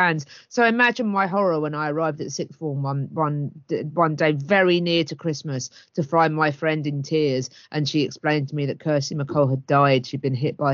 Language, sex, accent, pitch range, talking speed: English, female, British, 135-180 Hz, 220 wpm